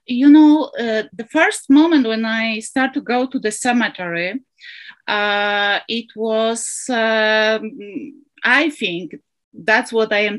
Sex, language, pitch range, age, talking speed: female, English, 185-225 Hz, 30-49, 140 wpm